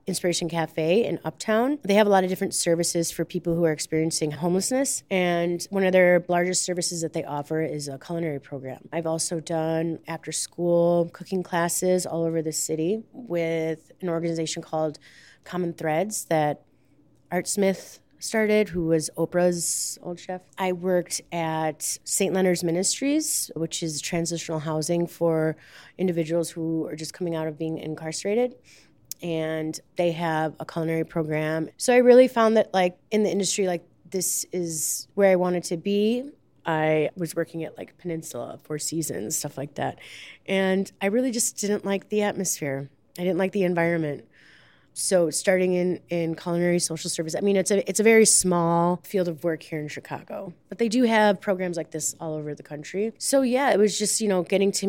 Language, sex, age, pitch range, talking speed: English, female, 20-39, 160-190 Hz, 180 wpm